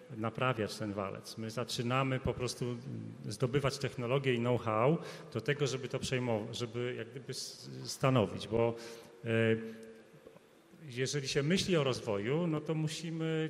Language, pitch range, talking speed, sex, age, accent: Polish, 115-150 Hz, 130 wpm, male, 40-59, native